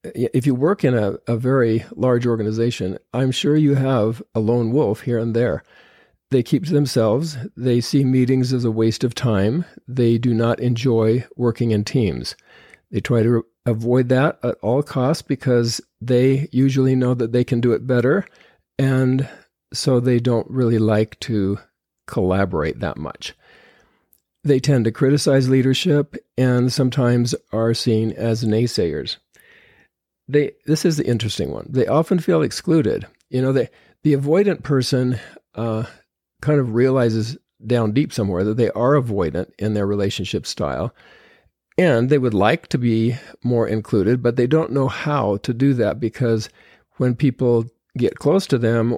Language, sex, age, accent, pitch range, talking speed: English, male, 50-69, American, 115-135 Hz, 160 wpm